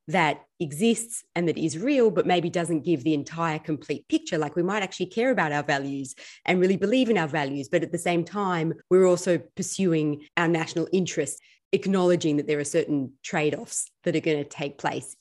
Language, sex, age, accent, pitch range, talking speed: English, female, 30-49, Australian, 150-185 Hz, 200 wpm